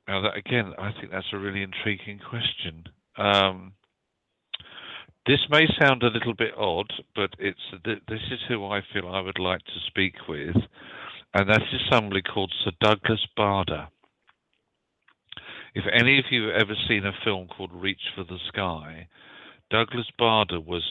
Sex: male